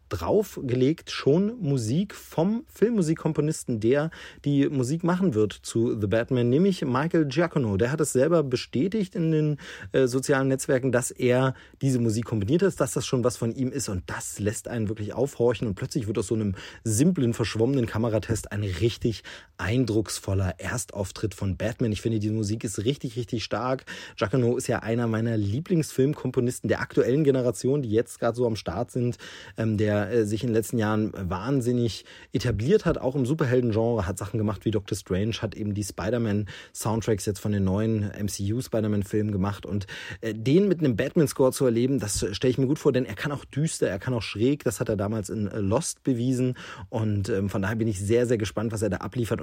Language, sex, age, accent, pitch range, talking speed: German, male, 30-49, German, 110-135 Hz, 185 wpm